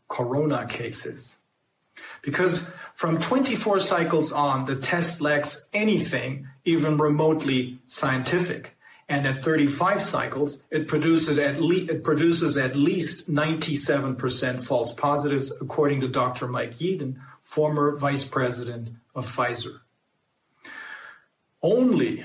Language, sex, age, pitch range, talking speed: English, male, 40-59, 130-160 Hz, 110 wpm